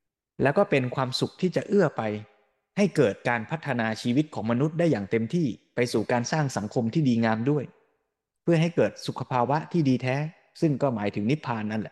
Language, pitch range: Thai, 115-150 Hz